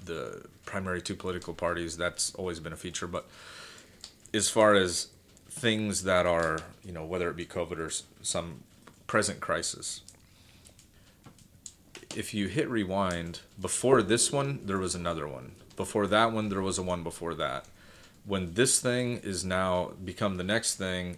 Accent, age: American, 30-49